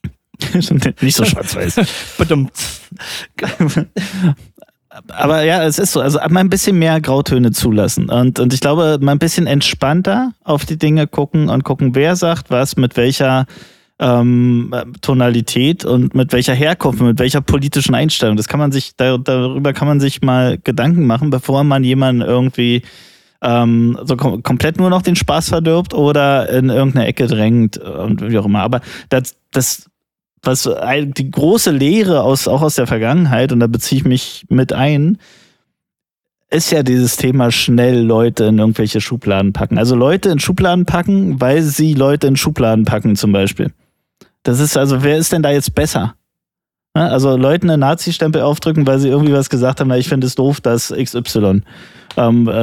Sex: male